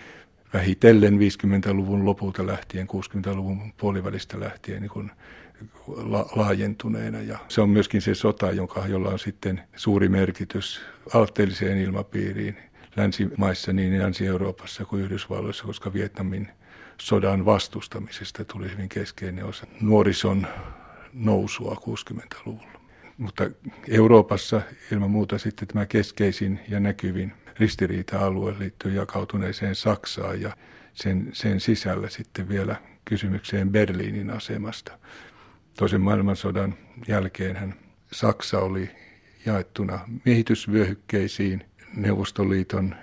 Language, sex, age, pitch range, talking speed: Finnish, male, 50-69, 95-105 Hz, 95 wpm